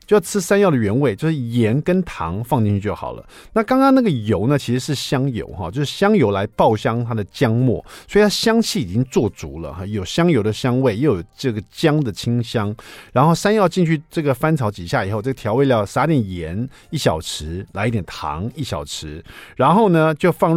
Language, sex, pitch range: Chinese, male, 105-155 Hz